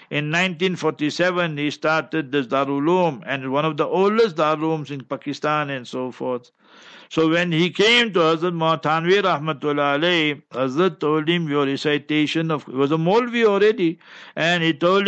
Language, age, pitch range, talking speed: English, 60-79, 135-175 Hz, 160 wpm